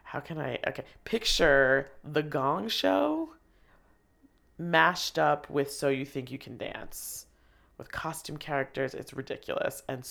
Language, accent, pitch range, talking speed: English, American, 130-155 Hz, 135 wpm